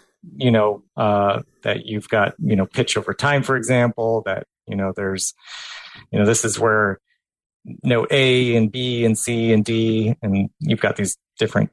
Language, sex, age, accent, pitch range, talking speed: English, male, 30-49, American, 110-135 Hz, 180 wpm